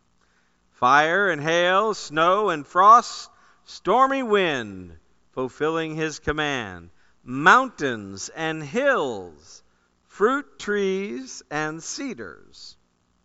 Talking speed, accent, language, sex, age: 80 wpm, American, English, male, 50-69